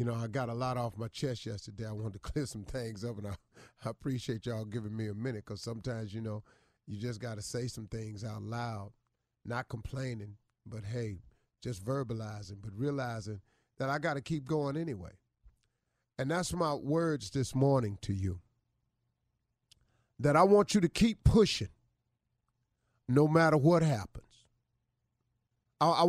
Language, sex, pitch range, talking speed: English, male, 115-160 Hz, 170 wpm